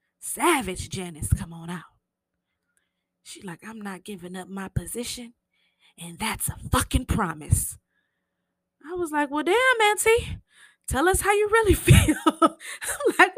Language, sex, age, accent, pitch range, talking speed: English, female, 20-39, American, 200-315 Hz, 145 wpm